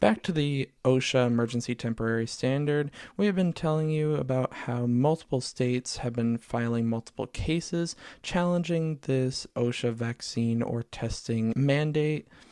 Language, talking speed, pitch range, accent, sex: English, 135 wpm, 120-155 Hz, American, male